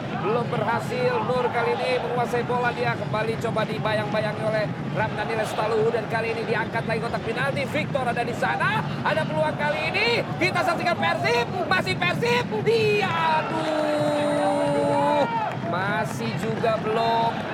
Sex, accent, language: male, native, Indonesian